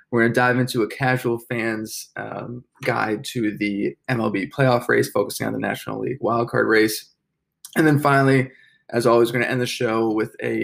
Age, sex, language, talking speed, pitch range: 20-39, male, English, 185 wpm, 110-130 Hz